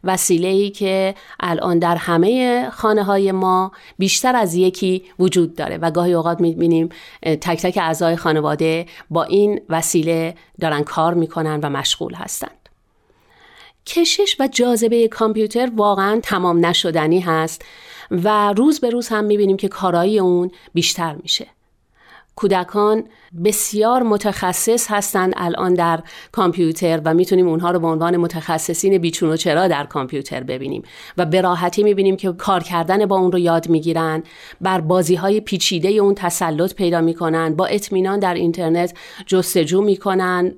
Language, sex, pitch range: Persian, female, 170-205 Hz